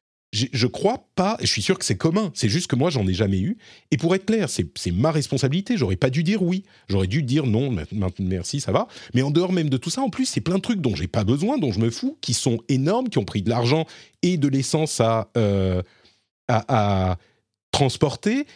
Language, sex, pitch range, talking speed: French, male, 110-160 Hz, 245 wpm